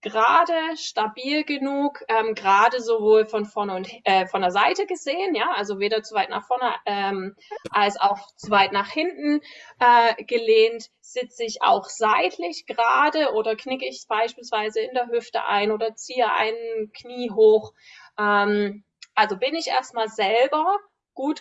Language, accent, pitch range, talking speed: German, German, 210-260 Hz, 155 wpm